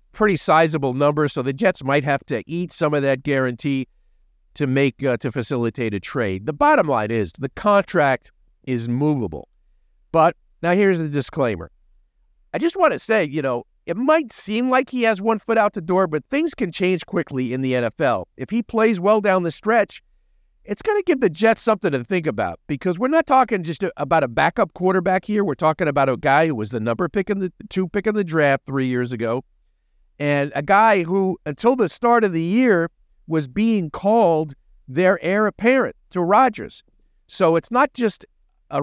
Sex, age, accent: male, 50-69, American